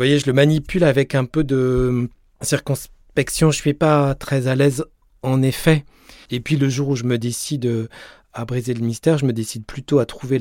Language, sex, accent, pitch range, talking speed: French, male, French, 120-150 Hz, 215 wpm